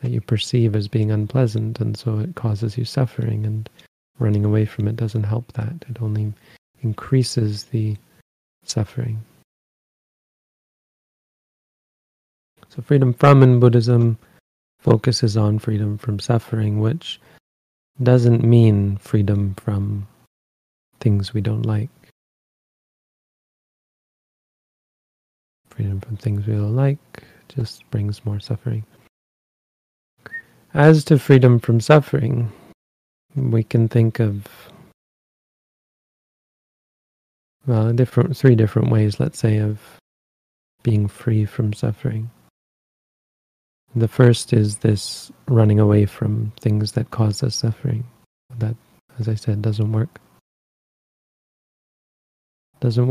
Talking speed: 105 wpm